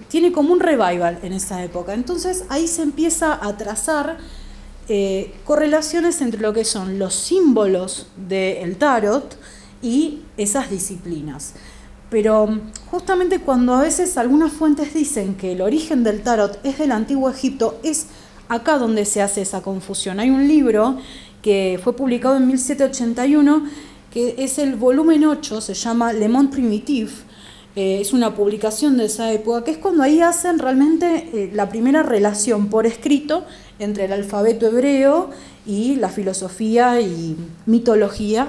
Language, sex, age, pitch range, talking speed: Spanish, female, 30-49, 200-285 Hz, 150 wpm